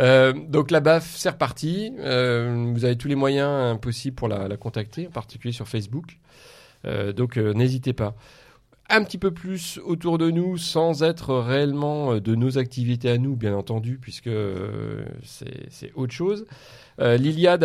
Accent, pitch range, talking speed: French, 115-150 Hz, 170 wpm